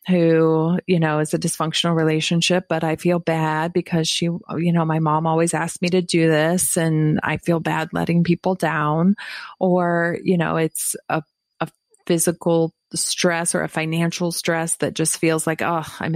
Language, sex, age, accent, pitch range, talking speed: English, female, 30-49, American, 155-180 Hz, 180 wpm